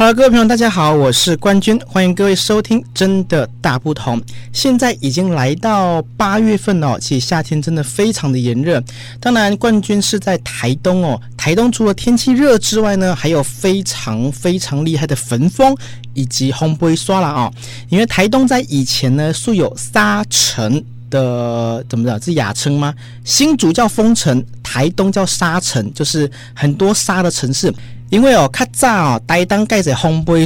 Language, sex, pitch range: Chinese, male, 125-200 Hz